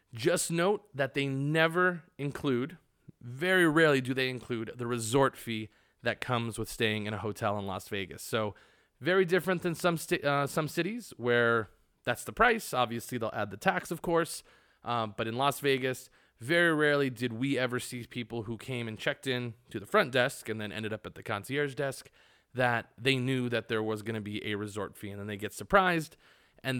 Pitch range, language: 110-145 Hz, English